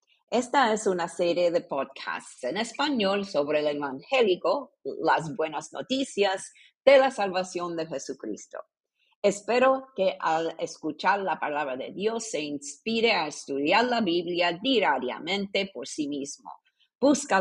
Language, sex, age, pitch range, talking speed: English, female, 50-69, 165-245 Hz, 130 wpm